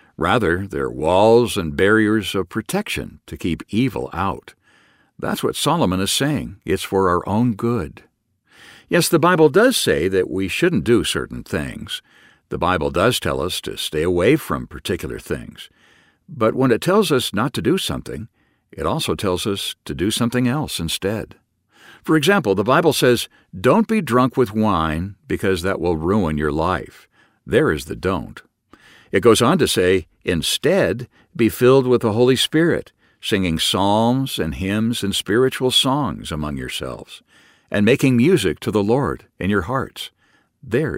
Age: 60-79